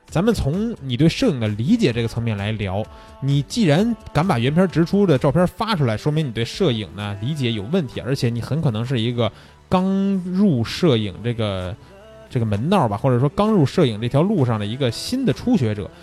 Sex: male